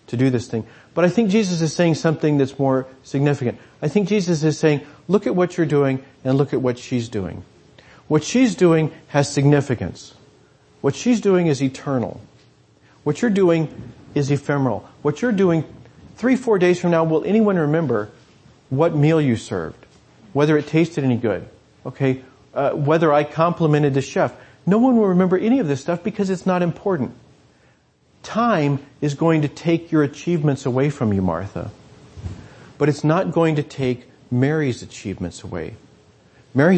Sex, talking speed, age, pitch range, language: male, 170 wpm, 40-59, 130-170 Hz, English